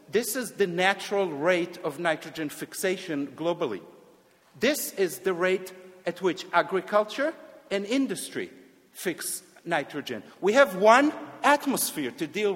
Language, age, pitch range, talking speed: English, 50-69, 170-210 Hz, 125 wpm